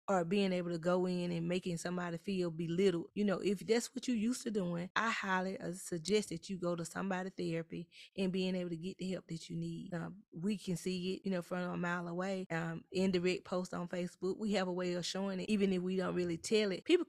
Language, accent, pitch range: English, American, 180-215 Hz